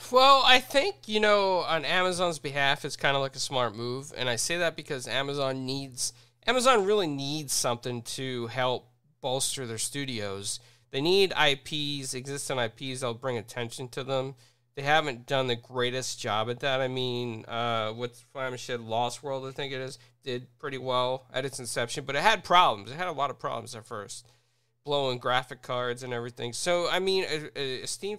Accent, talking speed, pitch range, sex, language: American, 195 wpm, 120-155 Hz, male, English